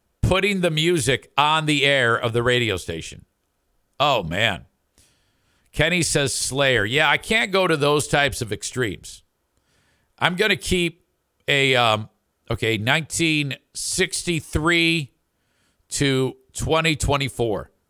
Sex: male